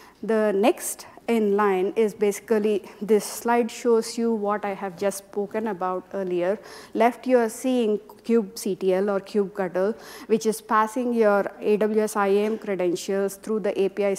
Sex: female